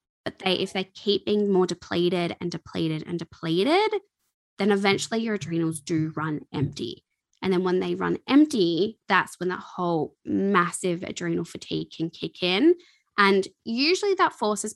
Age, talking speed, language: 20-39, 160 wpm, English